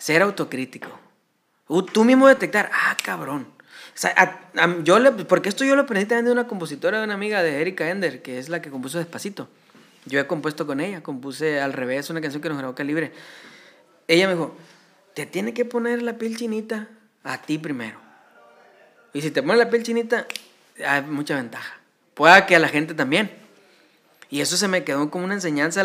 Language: Spanish